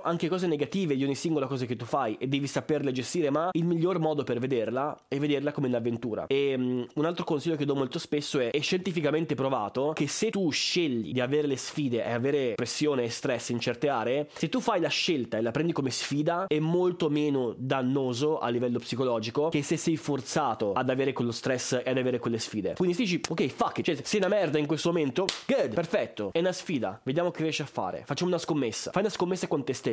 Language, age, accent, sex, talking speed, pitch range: Italian, 20-39, native, male, 230 wpm, 125-160 Hz